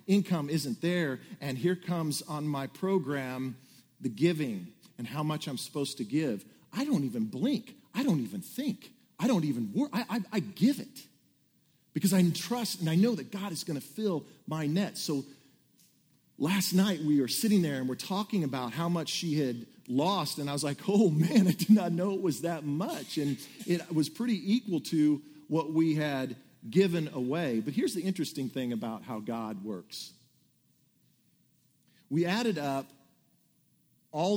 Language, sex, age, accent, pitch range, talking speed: English, male, 40-59, American, 130-190 Hz, 180 wpm